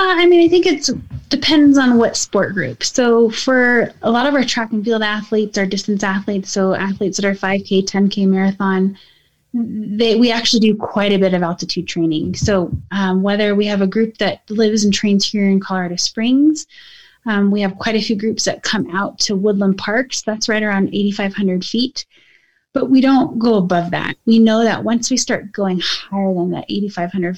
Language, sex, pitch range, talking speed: English, female, 195-225 Hz, 200 wpm